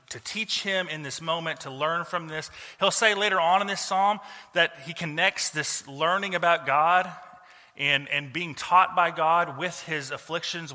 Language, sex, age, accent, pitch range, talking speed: English, male, 30-49, American, 155-205 Hz, 185 wpm